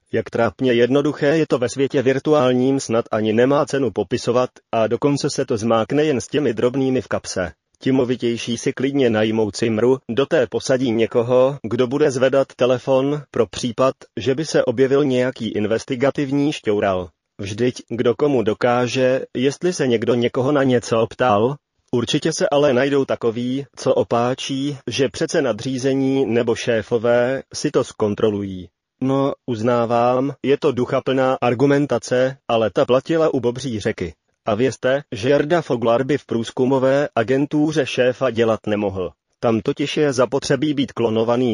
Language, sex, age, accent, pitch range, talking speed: Czech, male, 30-49, native, 115-135 Hz, 145 wpm